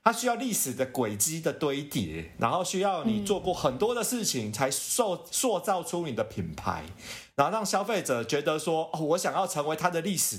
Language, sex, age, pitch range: Chinese, male, 30-49, 130-190 Hz